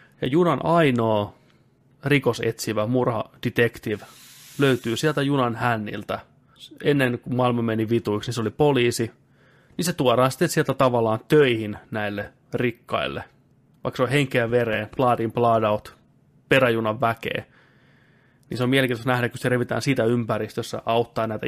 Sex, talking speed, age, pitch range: male, 140 wpm, 30-49, 110-130 Hz